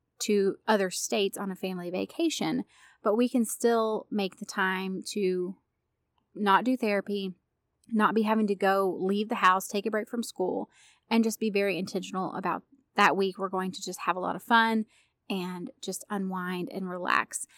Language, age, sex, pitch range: English, 30-49, female, 190-230 Hz